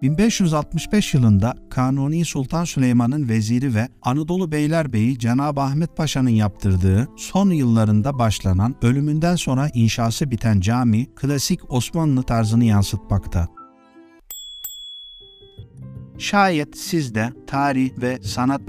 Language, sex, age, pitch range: Turkish, male, 50-69, 110-150 Hz